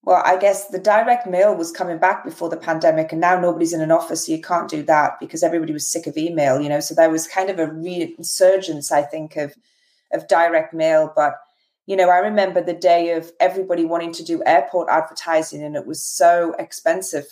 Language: English